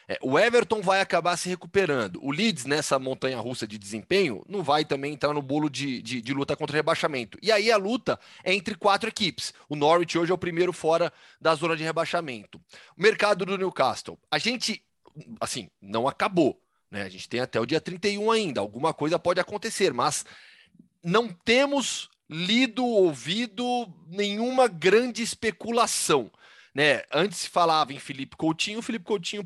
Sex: male